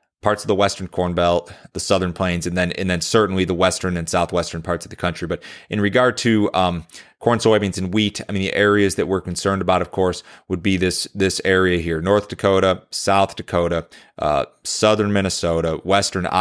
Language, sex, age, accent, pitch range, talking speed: English, male, 30-49, American, 85-100 Hz, 200 wpm